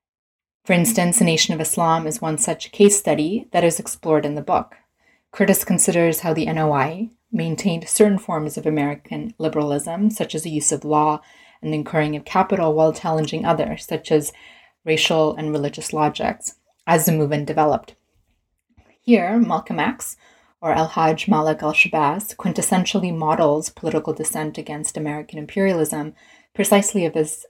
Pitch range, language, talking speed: 155-180 Hz, English, 150 wpm